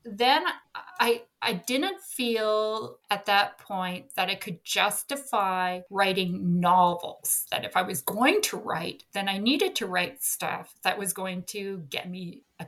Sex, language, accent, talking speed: female, English, American, 160 wpm